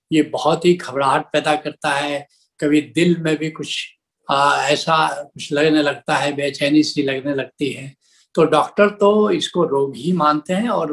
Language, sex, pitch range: Hindi, male, 150-195 Hz